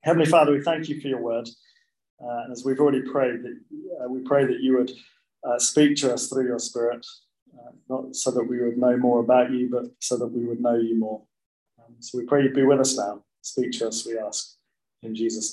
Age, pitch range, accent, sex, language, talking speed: 20-39, 125-170 Hz, British, male, English, 235 wpm